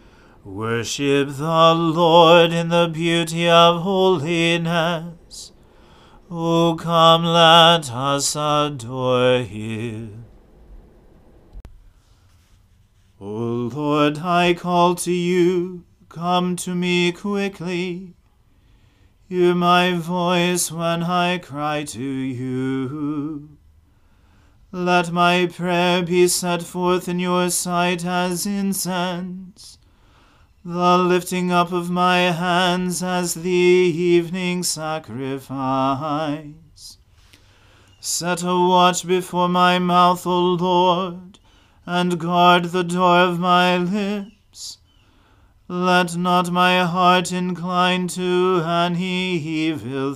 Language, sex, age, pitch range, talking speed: English, male, 40-59, 135-180 Hz, 90 wpm